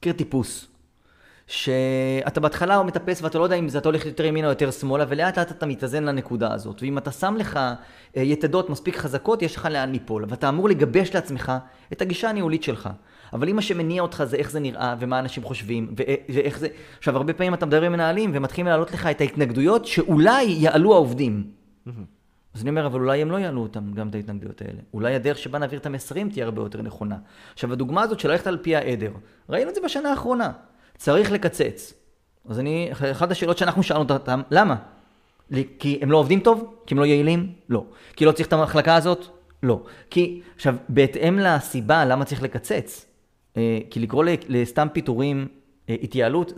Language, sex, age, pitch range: Hebrew, male, 30-49, 130-175 Hz